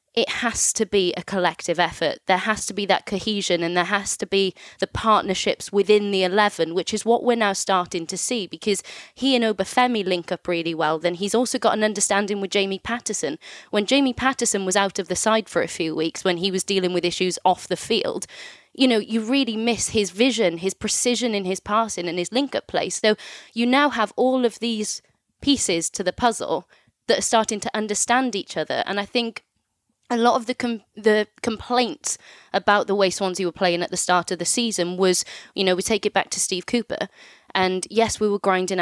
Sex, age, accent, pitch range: female, 20-39, British, 180-225 Hz